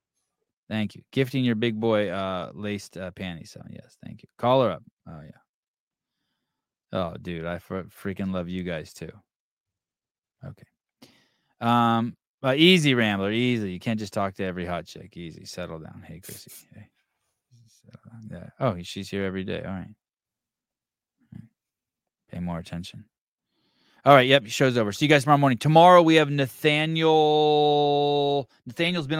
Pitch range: 100-145 Hz